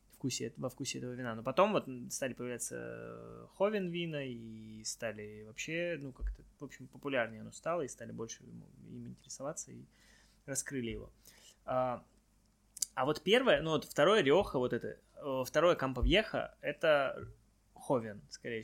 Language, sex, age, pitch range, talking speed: Russian, male, 20-39, 120-165 Hz, 140 wpm